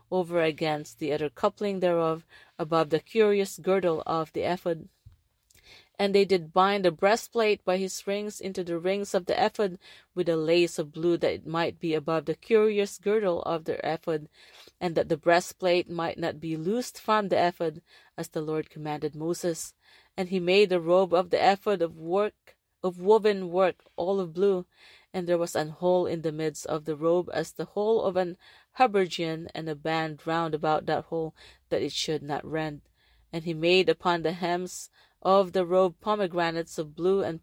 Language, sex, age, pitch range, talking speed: English, female, 30-49, 160-185 Hz, 190 wpm